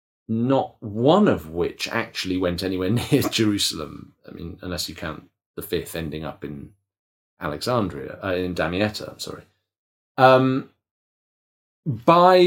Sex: male